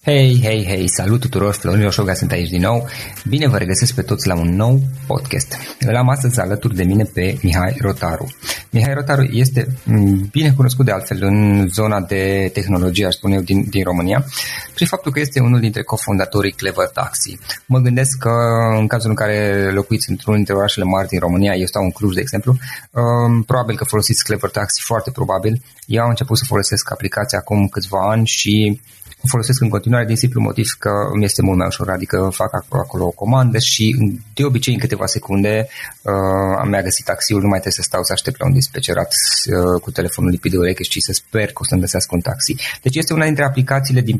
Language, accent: Romanian, native